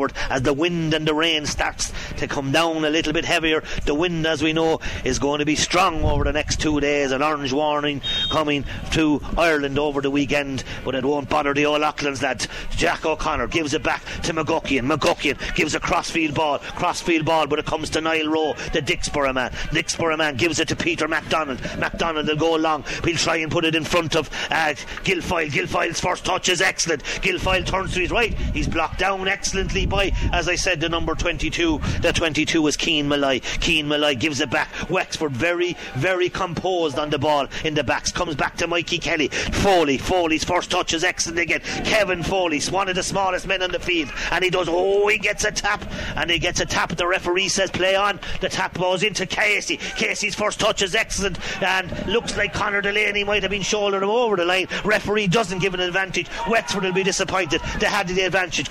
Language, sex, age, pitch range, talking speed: English, male, 40-59, 150-185 Hz, 210 wpm